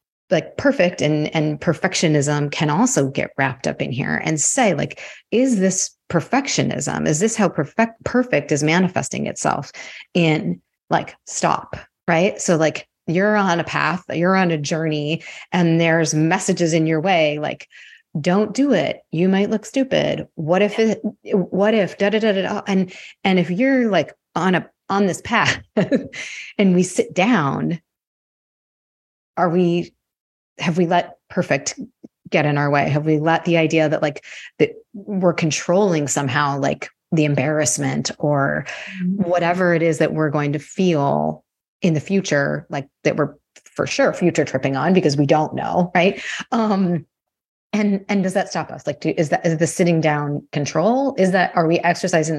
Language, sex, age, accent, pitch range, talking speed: English, female, 30-49, American, 150-195 Hz, 165 wpm